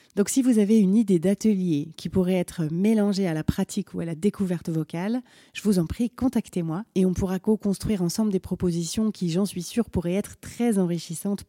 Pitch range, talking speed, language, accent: 165-215 Hz, 205 wpm, French, French